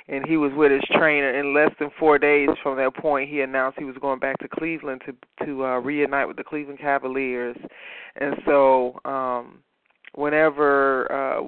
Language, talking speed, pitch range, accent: English, 185 wpm, 135-160 Hz, American